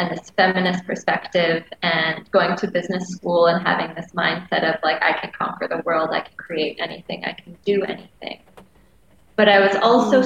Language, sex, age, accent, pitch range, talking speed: English, female, 20-39, American, 170-195 Hz, 185 wpm